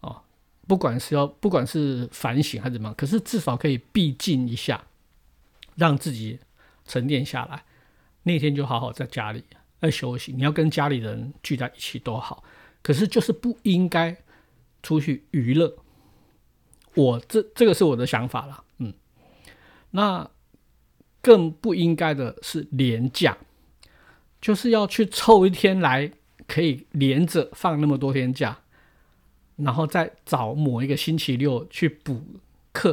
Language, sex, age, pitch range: Chinese, male, 50-69, 130-180 Hz